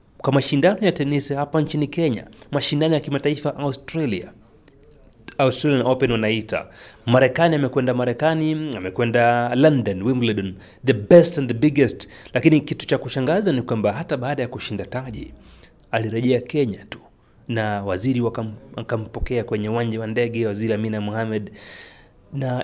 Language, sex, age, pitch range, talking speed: Swahili, male, 30-49, 110-145 Hz, 135 wpm